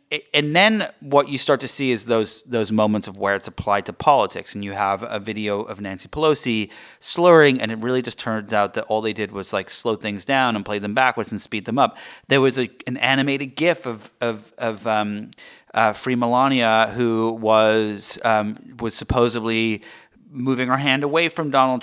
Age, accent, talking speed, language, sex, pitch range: 30-49, American, 200 wpm, English, male, 110-135 Hz